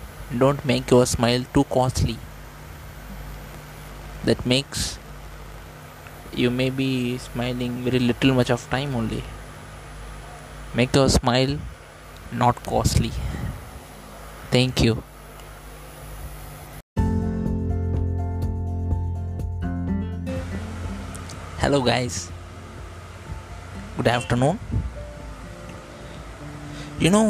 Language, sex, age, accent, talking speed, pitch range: English, male, 20-39, Indian, 70 wpm, 90-140 Hz